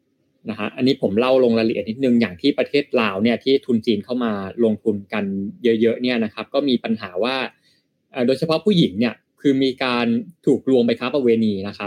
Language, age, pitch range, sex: Thai, 20-39, 115-140 Hz, male